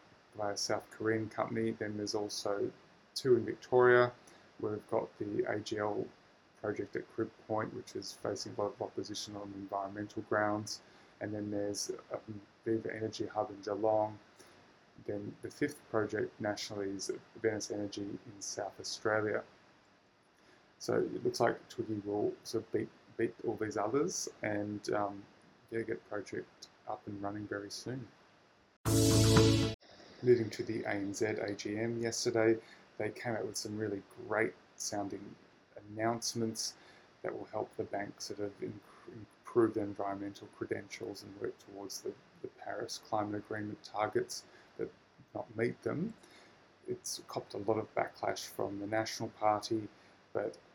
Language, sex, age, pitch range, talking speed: English, male, 20-39, 100-110 Hz, 140 wpm